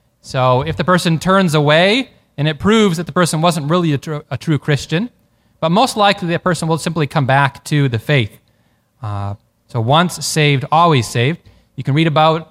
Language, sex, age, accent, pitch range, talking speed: English, male, 20-39, American, 130-175 Hz, 195 wpm